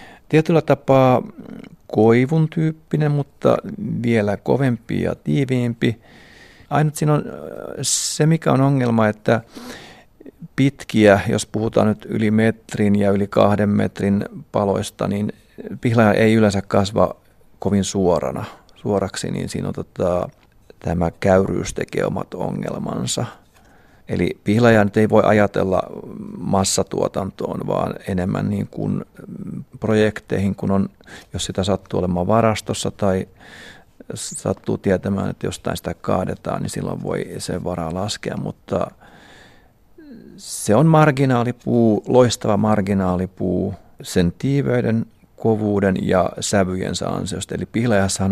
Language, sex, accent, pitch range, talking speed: Finnish, male, native, 95-125 Hz, 110 wpm